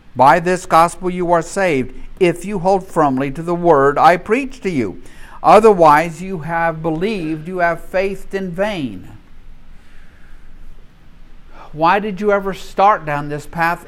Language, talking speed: English, 145 wpm